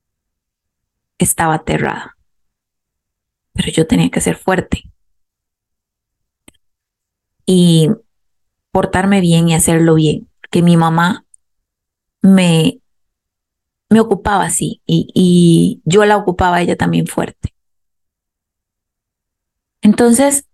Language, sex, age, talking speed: Spanish, female, 20-39, 90 wpm